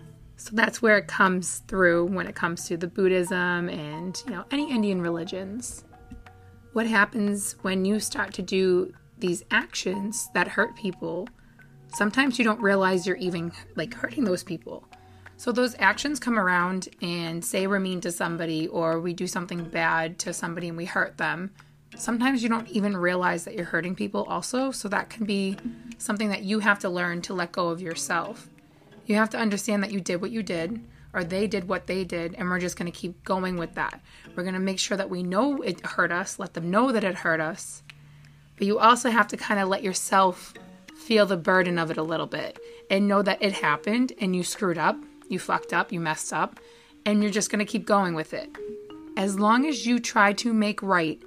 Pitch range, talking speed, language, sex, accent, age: 175-215 Hz, 210 wpm, English, female, American, 20-39